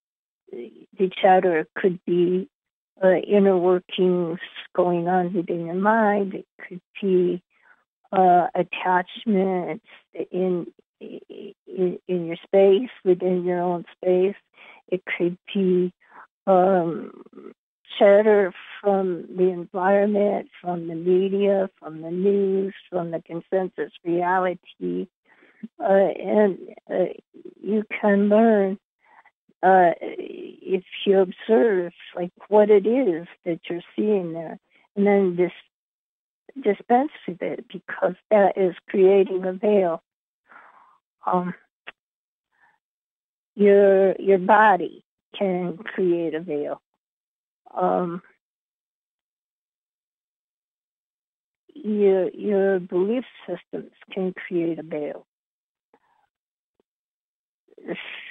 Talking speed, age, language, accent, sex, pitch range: 95 wpm, 50-69, English, American, female, 180-205 Hz